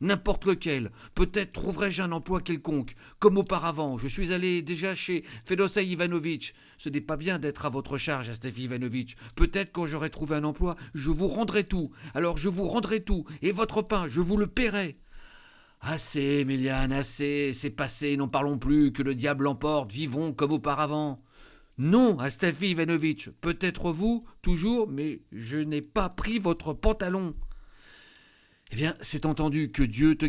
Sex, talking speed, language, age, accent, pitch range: male, 175 wpm, French, 50-69, French, 120-170 Hz